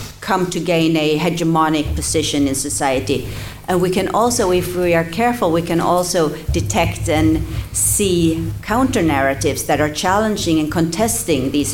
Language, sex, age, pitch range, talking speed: English, female, 50-69, 145-175 Hz, 155 wpm